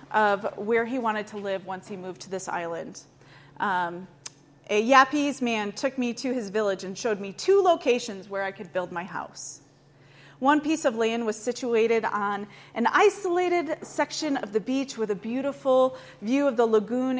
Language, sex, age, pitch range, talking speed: English, female, 30-49, 200-250 Hz, 180 wpm